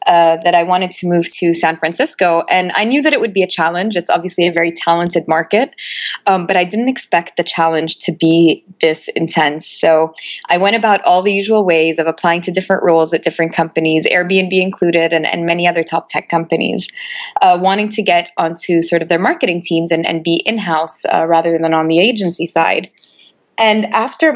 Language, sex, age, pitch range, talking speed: English, female, 20-39, 165-205 Hz, 205 wpm